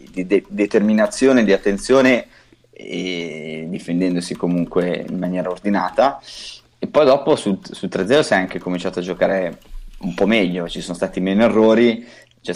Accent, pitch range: native, 90-100 Hz